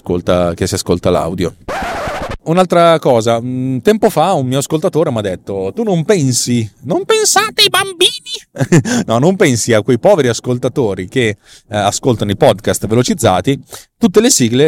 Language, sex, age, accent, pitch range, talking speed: Italian, male, 30-49, native, 95-120 Hz, 160 wpm